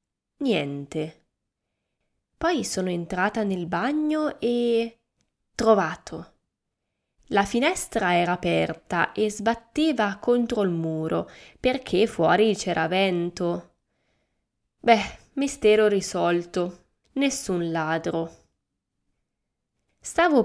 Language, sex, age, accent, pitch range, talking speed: Italian, female, 20-39, native, 175-240 Hz, 80 wpm